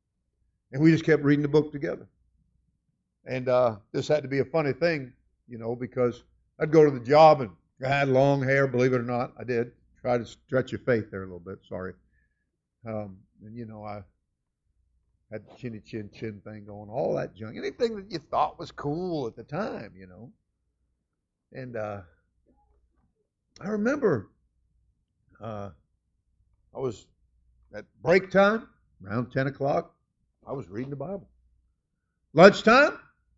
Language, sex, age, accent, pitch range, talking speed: English, male, 50-69, American, 90-140 Hz, 160 wpm